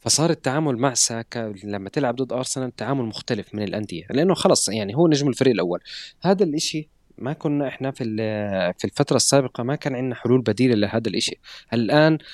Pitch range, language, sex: 110-140 Hz, Arabic, male